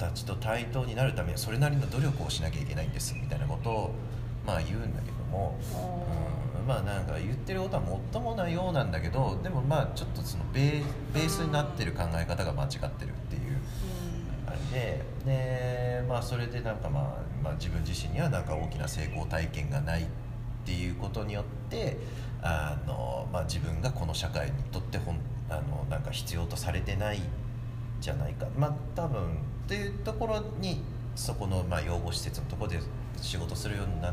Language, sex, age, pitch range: Japanese, male, 30-49, 105-130 Hz